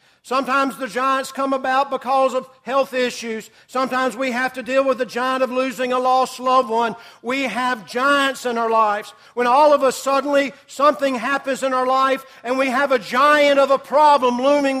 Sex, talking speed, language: male, 195 wpm, English